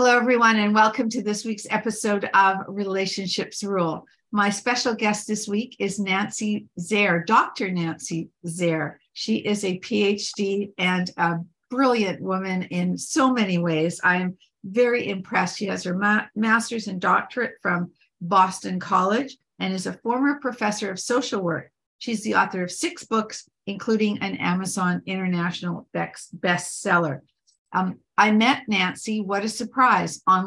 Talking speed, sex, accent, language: 145 wpm, female, American, English